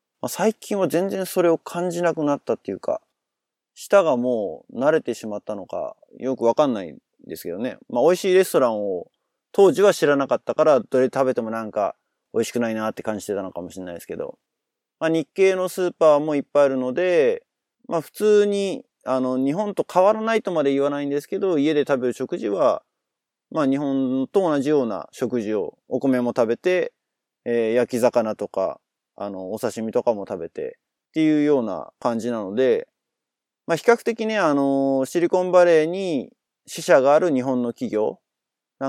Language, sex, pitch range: Japanese, male, 125-195 Hz